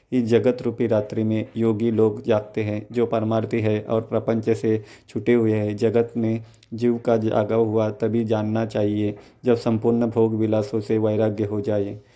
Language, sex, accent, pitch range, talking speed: Hindi, male, native, 110-115 Hz, 175 wpm